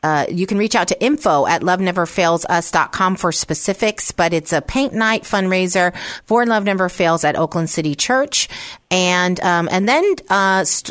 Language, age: English, 40-59